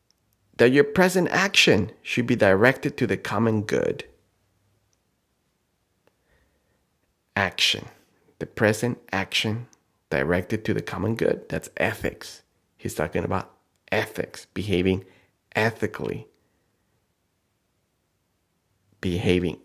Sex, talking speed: male, 90 wpm